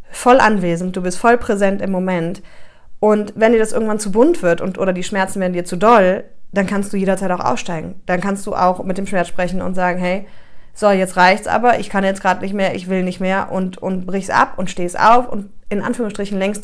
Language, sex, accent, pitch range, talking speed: German, female, German, 190-230 Hz, 240 wpm